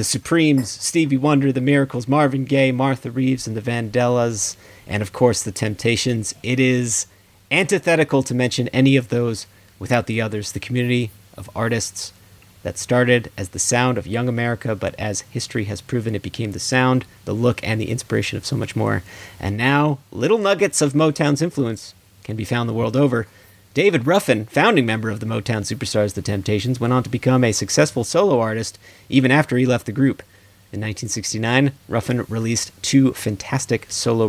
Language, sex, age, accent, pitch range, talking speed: English, male, 40-59, American, 105-130 Hz, 180 wpm